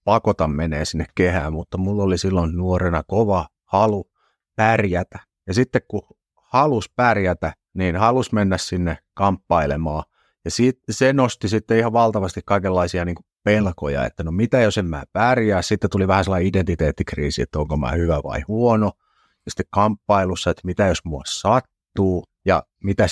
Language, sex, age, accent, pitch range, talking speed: Finnish, male, 30-49, native, 85-110 Hz, 150 wpm